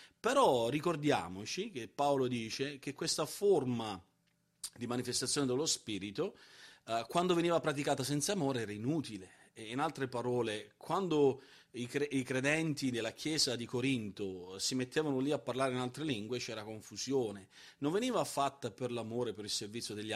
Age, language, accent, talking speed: 40-59, Italian, native, 150 wpm